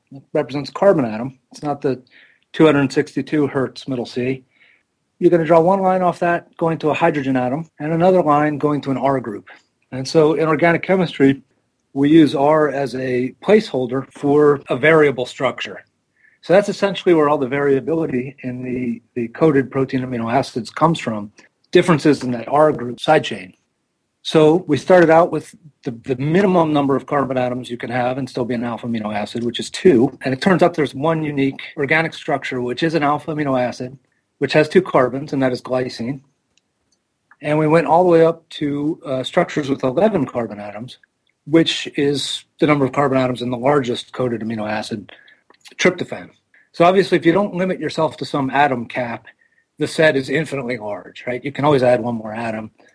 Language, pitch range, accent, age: English, 125-155 Hz, American, 40-59